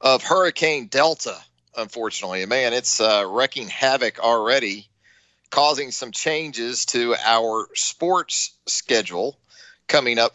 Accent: American